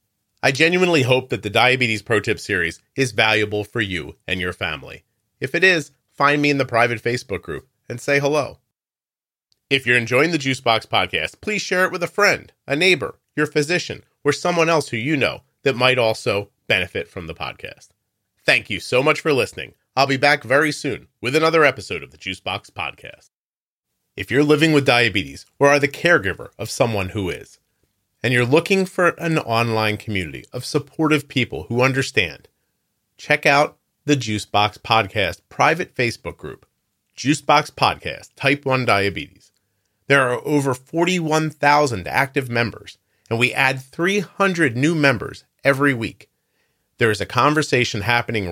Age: 30-49